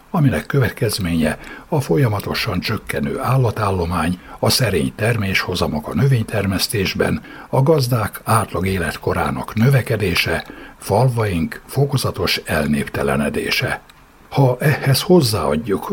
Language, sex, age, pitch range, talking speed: Hungarian, male, 60-79, 95-130 Hz, 85 wpm